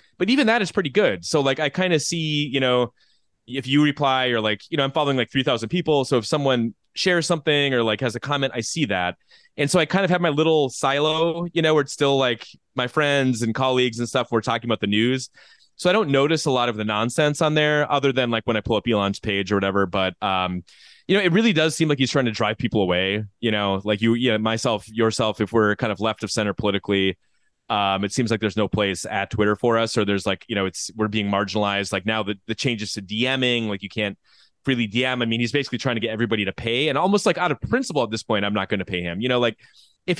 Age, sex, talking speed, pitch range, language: 20-39, male, 270 wpm, 110-150 Hz, English